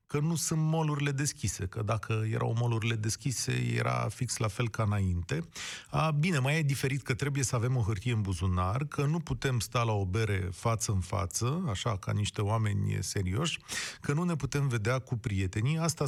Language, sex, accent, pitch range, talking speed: Romanian, male, native, 110-145 Hz, 190 wpm